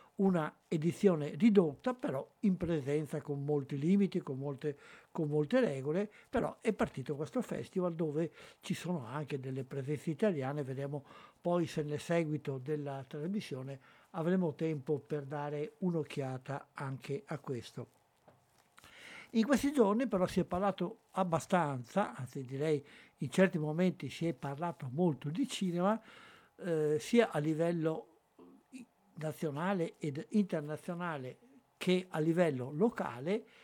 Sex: male